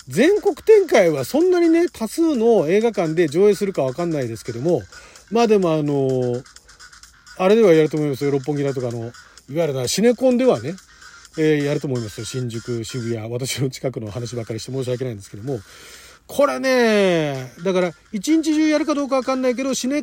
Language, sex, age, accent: Japanese, male, 40-59, native